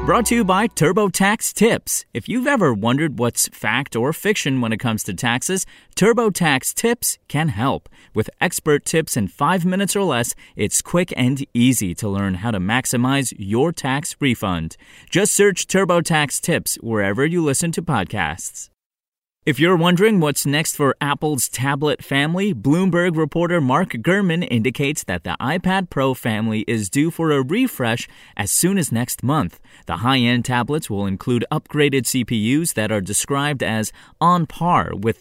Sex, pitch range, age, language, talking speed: male, 110-160 Hz, 30-49, English, 160 wpm